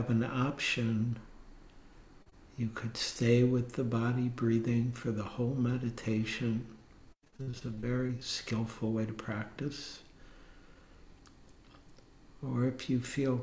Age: 60-79